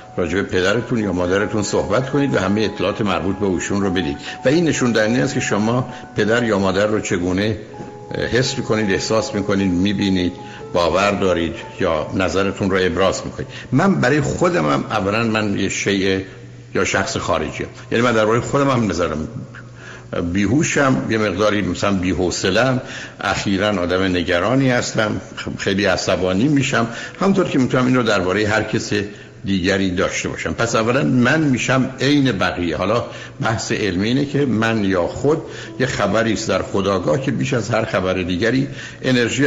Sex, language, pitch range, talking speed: male, Persian, 100-130 Hz, 155 wpm